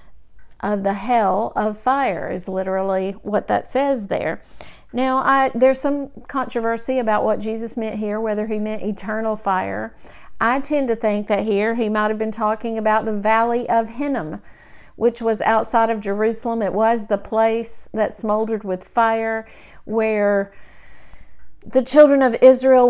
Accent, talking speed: American, 155 wpm